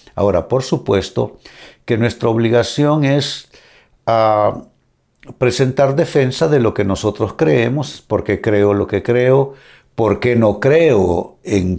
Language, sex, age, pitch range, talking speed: Spanish, male, 60-79, 100-130 Hz, 120 wpm